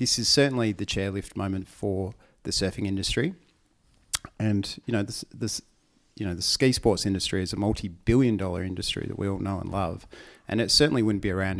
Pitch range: 95-110 Hz